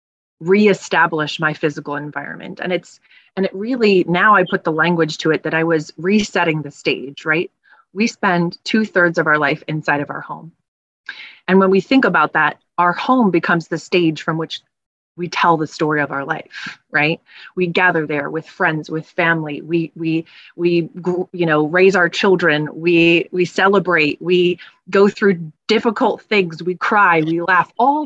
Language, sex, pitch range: English, female, 155-195 Hz